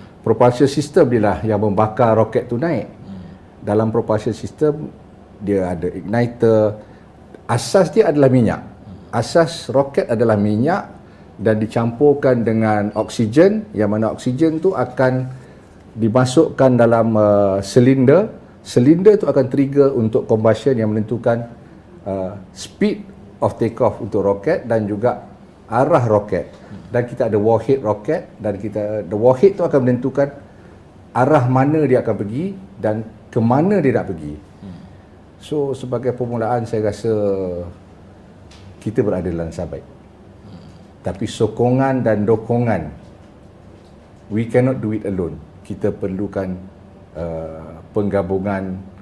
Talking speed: 120 wpm